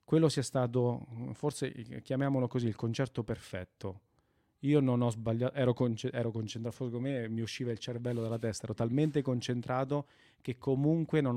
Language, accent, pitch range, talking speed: Italian, native, 110-140 Hz, 165 wpm